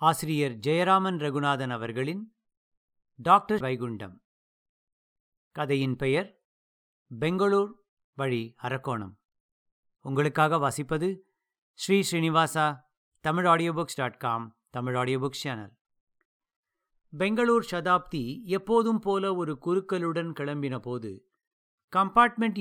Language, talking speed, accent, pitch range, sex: English, 75 wpm, Indian, 135-195 Hz, male